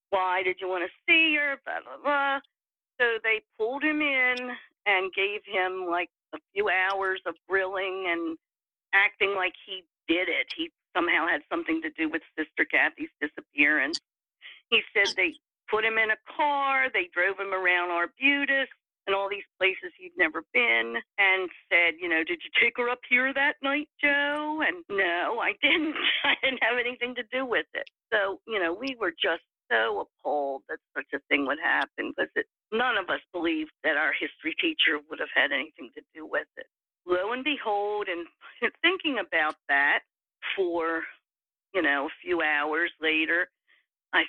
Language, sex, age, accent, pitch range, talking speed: English, female, 50-69, American, 190-310 Hz, 175 wpm